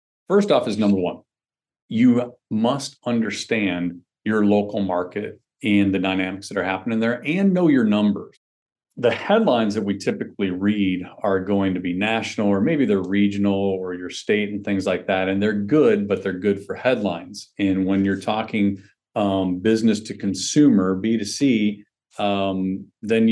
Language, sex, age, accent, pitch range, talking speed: English, male, 40-59, American, 95-110 Hz, 160 wpm